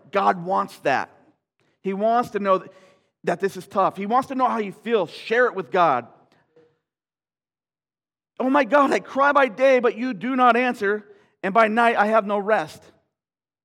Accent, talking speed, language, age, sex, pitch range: American, 180 wpm, English, 40-59, male, 175-230 Hz